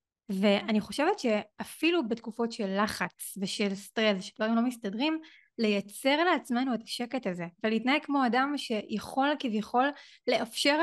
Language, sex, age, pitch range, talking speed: Hebrew, female, 20-39, 205-270 Hz, 120 wpm